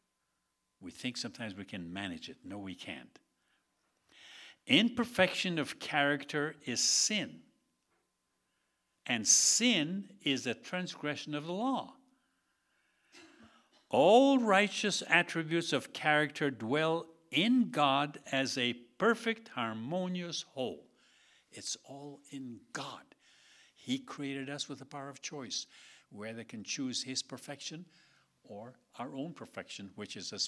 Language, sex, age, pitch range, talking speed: English, male, 60-79, 130-205 Hz, 120 wpm